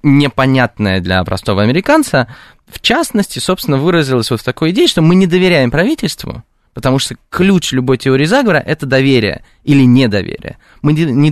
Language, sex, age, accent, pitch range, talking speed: Russian, male, 20-39, native, 110-150 Hz, 160 wpm